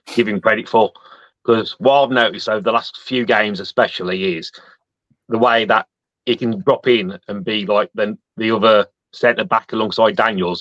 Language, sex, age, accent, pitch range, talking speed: English, male, 30-49, British, 100-125 Hz, 175 wpm